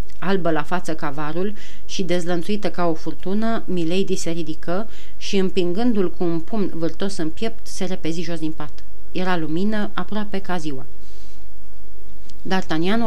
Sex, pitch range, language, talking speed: female, 165-200 Hz, Romanian, 145 wpm